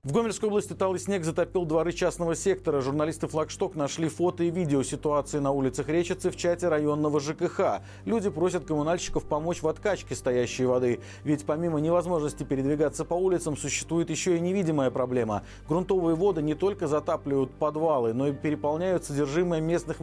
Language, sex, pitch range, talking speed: Russian, male, 135-175 Hz, 160 wpm